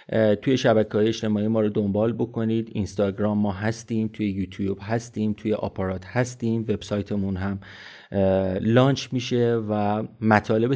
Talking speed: 125 wpm